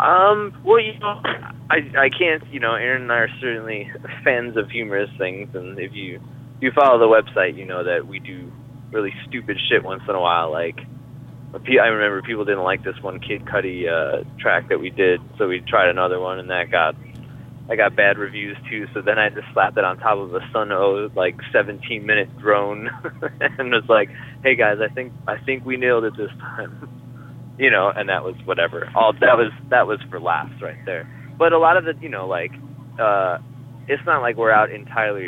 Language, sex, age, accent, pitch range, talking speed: English, male, 20-39, American, 110-135 Hz, 215 wpm